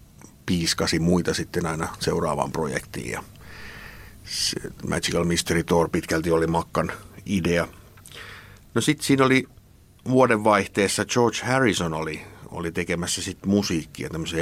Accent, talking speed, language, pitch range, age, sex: native, 115 wpm, Finnish, 85-105 Hz, 60-79, male